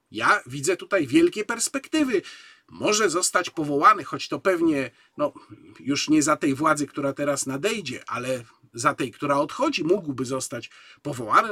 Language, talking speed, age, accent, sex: Polish, 145 wpm, 50-69, native, male